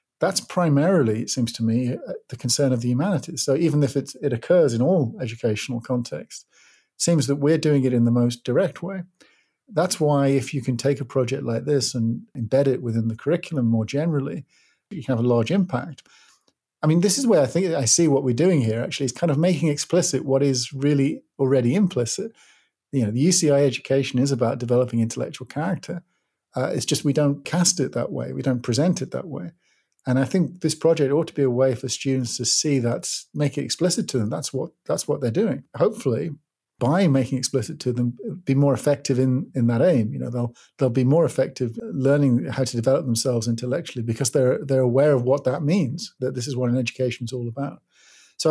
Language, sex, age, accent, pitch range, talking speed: English, male, 50-69, British, 125-155 Hz, 215 wpm